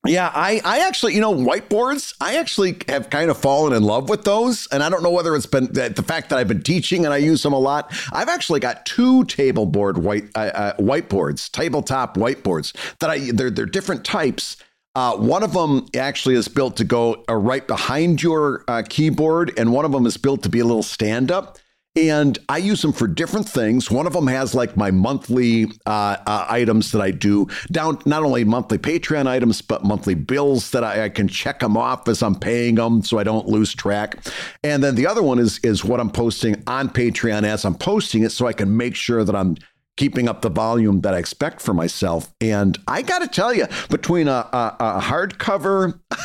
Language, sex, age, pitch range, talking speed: English, male, 50-69, 110-165 Hz, 220 wpm